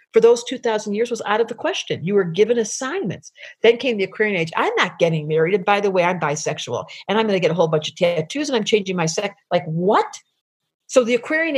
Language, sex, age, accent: English, female, 50-69, American